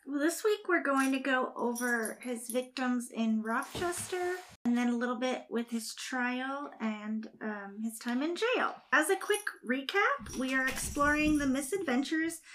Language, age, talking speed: English, 30-49, 165 wpm